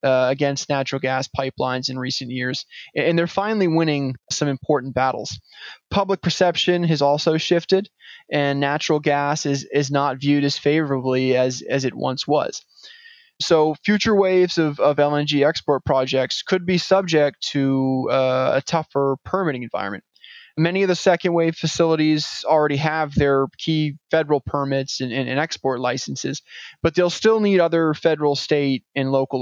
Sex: male